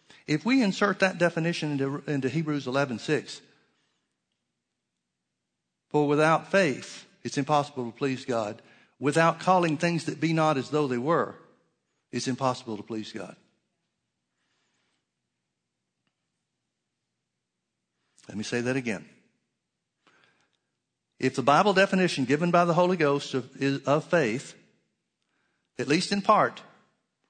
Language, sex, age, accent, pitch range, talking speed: English, male, 60-79, American, 130-165 Hz, 125 wpm